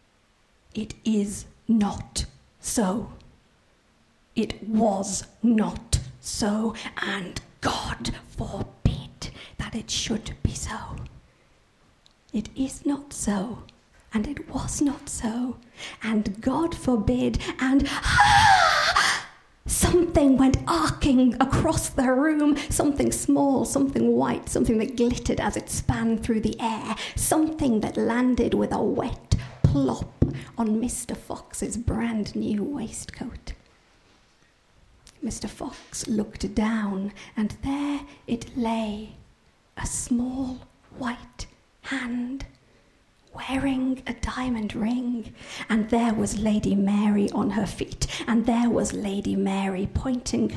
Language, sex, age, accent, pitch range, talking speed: English, female, 50-69, British, 215-265 Hz, 110 wpm